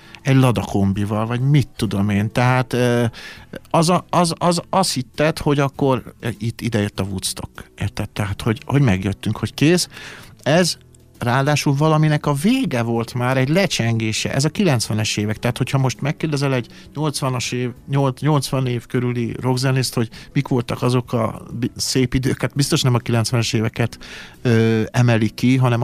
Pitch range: 110-135 Hz